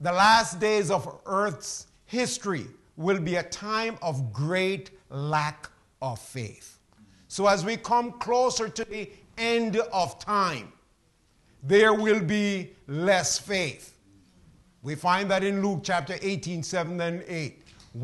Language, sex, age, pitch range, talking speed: English, male, 50-69, 145-205 Hz, 135 wpm